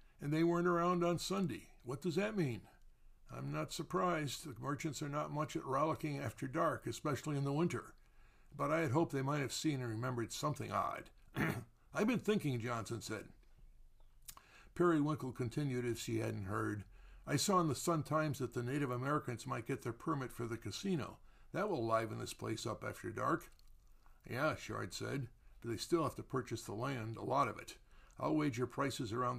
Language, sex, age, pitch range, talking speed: English, male, 60-79, 115-155 Hz, 190 wpm